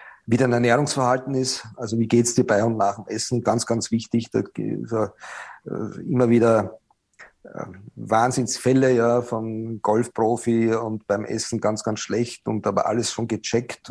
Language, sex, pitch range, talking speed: German, male, 110-125 Hz, 150 wpm